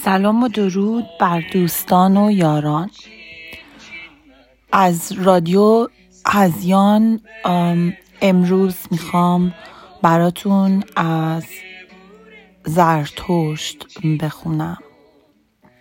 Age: 30-49